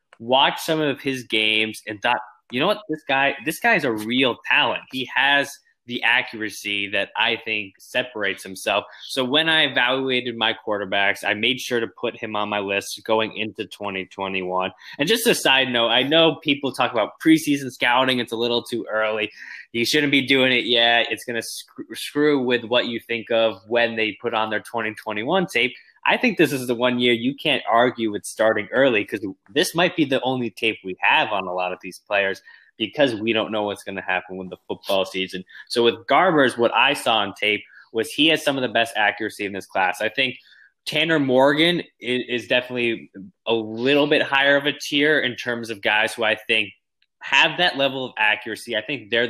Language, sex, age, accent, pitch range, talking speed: English, male, 20-39, American, 110-135 Hz, 205 wpm